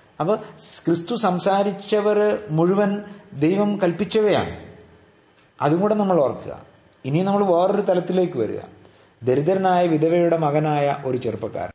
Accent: native